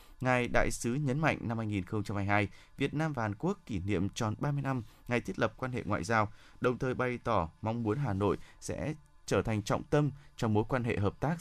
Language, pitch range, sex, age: Vietnamese, 100-130 Hz, male, 20-39